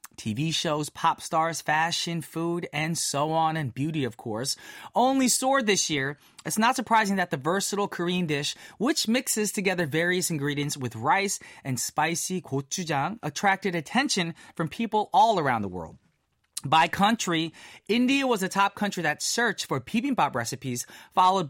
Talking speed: 155 wpm